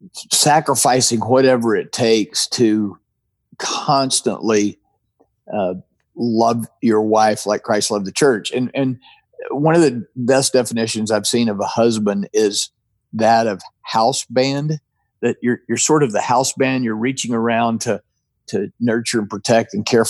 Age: 50-69